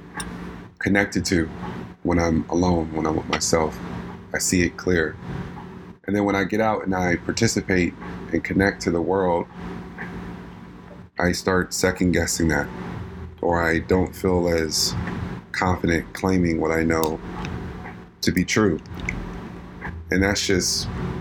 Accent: American